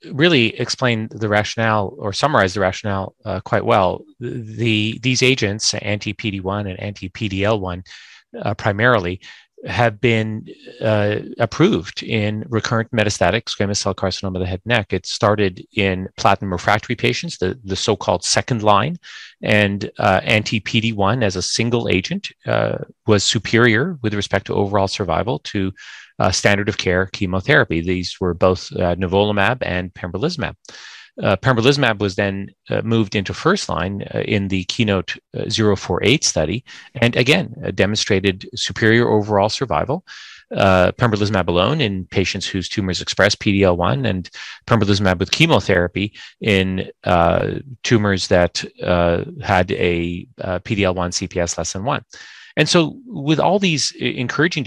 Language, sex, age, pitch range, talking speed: English, male, 30-49, 95-115 Hz, 140 wpm